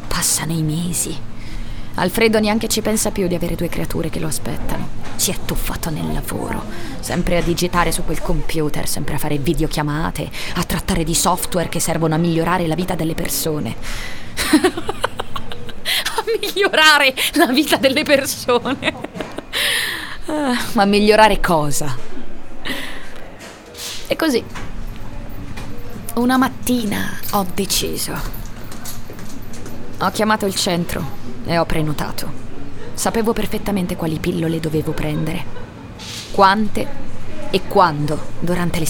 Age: 20-39